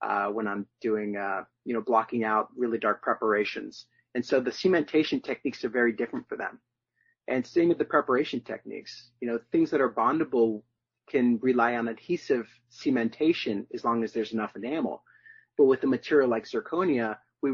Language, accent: English, American